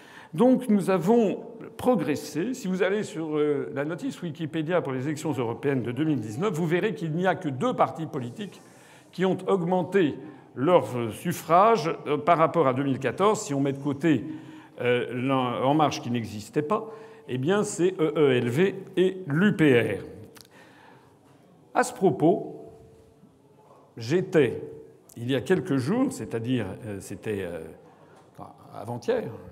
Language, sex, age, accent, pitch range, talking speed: French, male, 50-69, French, 130-185 Hz, 140 wpm